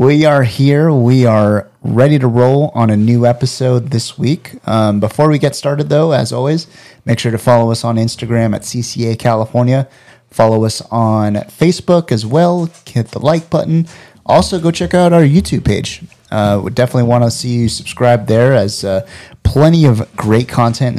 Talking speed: 185 wpm